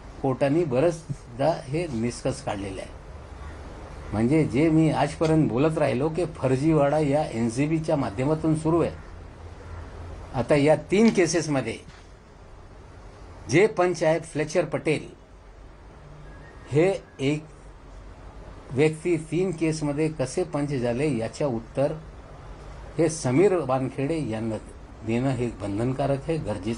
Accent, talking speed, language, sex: native, 95 wpm, Marathi, male